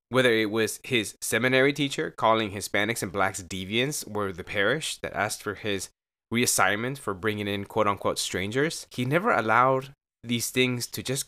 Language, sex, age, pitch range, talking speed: English, male, 20-39, 100-135 Hz, 165 wpm